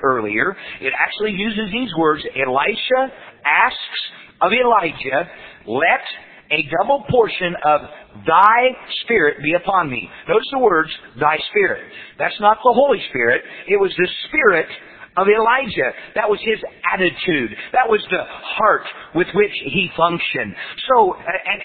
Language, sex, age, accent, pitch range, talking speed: English, male, 50-69, American, 175-260 Hz, 140 wpm